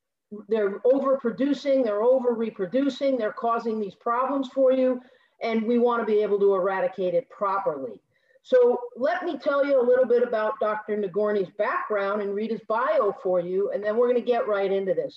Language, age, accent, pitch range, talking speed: English, 40-59, American, 205-265 Hz, 185 wpm